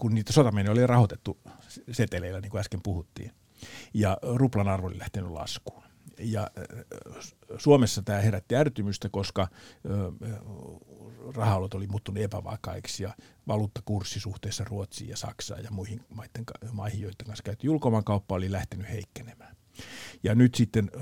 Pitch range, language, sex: 100-115 Hz, Finnish, male